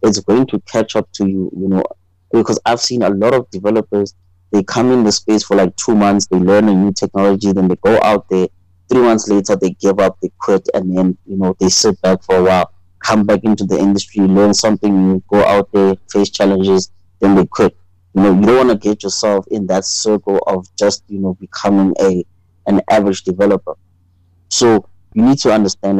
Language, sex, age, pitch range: English, male, 20-39, 90-105 Hz